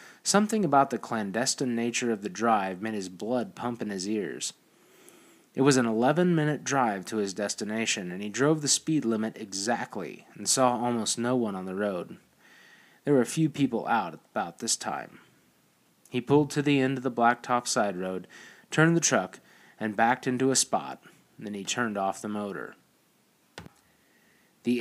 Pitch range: 110-140 Hz